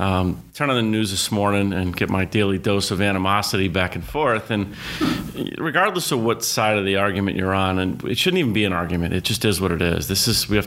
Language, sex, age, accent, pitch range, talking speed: English, male, 30-49, American, 95-110 Hz, 245 wpm